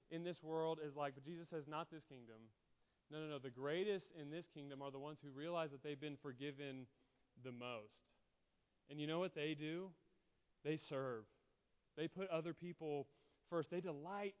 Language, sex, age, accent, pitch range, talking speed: English, male, 30-49, American, 145-185 Hz, 190 wpm